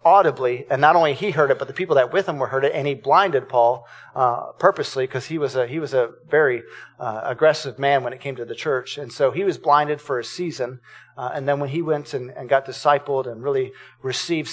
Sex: male